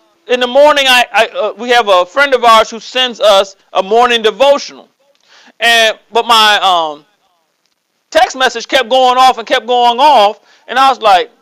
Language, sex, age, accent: English, male, 40-59, American